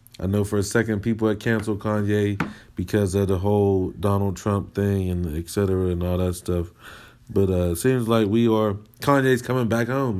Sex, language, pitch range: male, English, 105-125 Hz